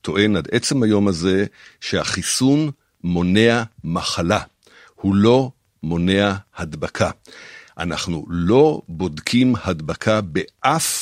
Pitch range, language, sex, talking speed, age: 100-150 Hz, Hebrew, male, 95 wpm, 60-79